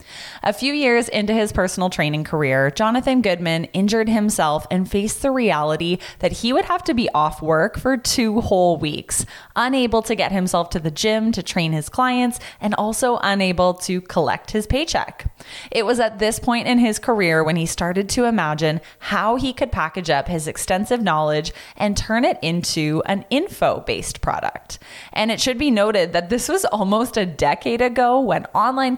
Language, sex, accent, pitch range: English, female, American, 165-230 Hz